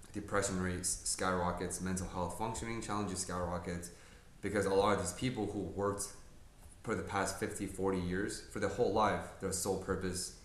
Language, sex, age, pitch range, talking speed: English, male, 20-39, 90-100 Hz, 165 wpm